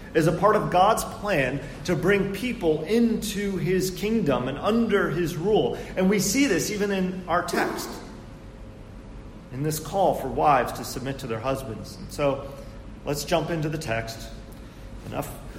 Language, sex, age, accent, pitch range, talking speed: English, male, 40-59, American, 110-155 Hz, 160 wpm